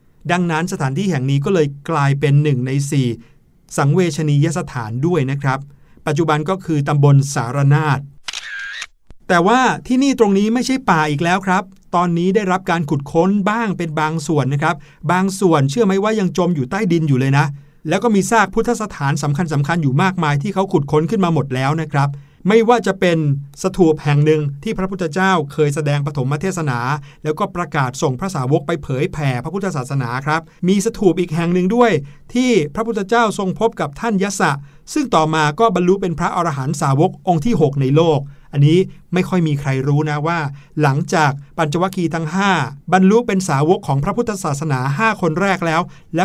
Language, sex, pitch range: Thai, male, 145-190 Hz